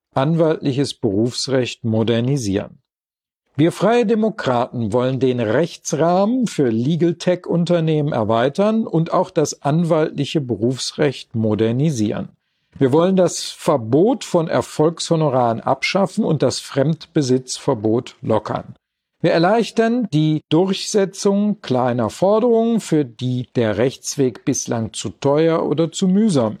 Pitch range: 125-180 Hz